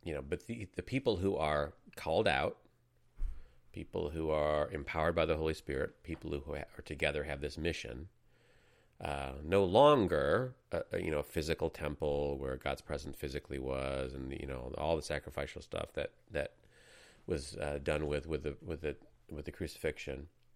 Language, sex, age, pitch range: English, male, 40-59, 70-90 Hz